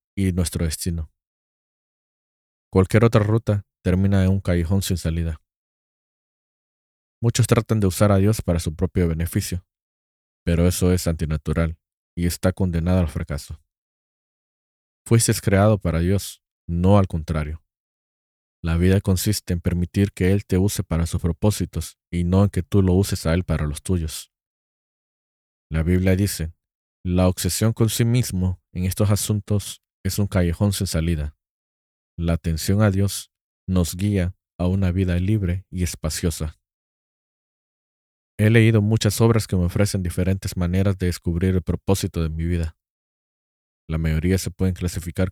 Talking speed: 145 wpm